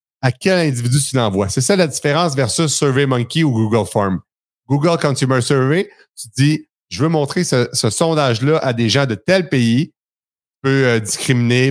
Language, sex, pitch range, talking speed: French, male, 125-165 Hz, 190 wpm